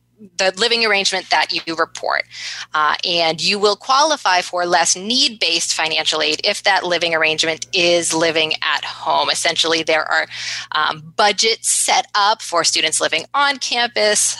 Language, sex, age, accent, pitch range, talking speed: English, female, 20-39, American, 160-205 Hz, 155 wpm